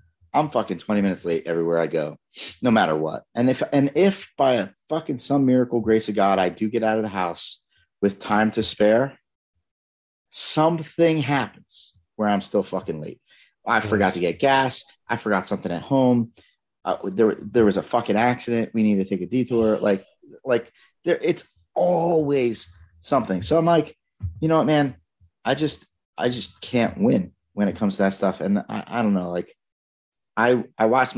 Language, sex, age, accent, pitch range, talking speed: English, male, 40-59, American, 90-115 Hz, 190 wpm